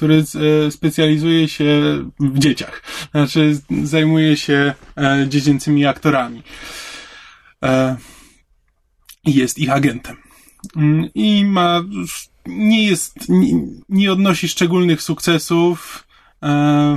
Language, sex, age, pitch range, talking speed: Polish, male, 20-39, 130-155 Hz, 70 wpm